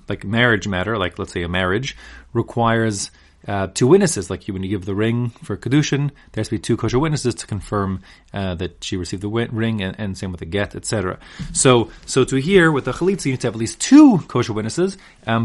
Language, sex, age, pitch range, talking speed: English, male, 30-49, 100-130 Hz, 235 wpm